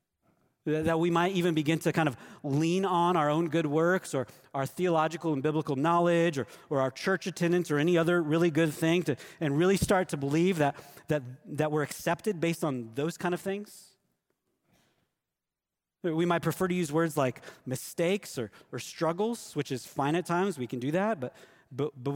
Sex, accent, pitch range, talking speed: male, American, 130-170 Hz, 190 wpm